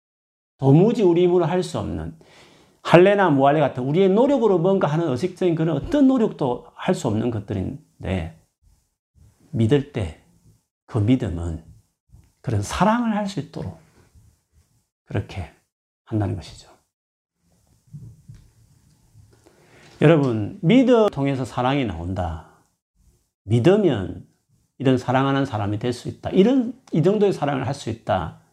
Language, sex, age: Korean, male, 40-59